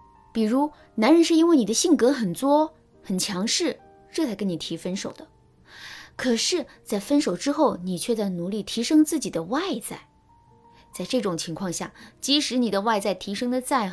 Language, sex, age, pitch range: Chinese, female, 20-39, 175-255 Hz